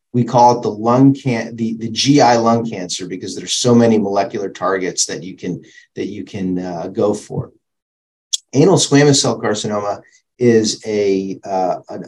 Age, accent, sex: 40-59, American, male